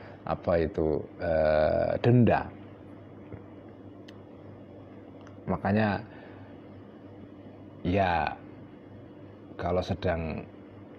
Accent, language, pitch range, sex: native, Indonesian, 90-110 Hz, male